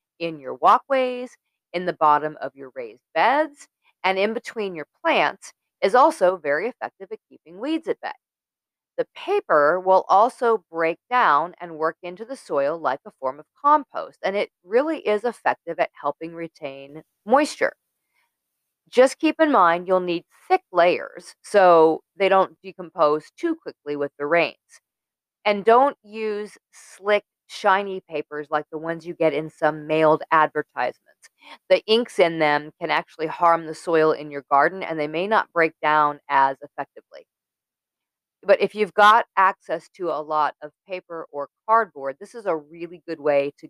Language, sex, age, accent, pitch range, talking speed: English, female, 40-59, American, 155-225 Hz, 165 wpm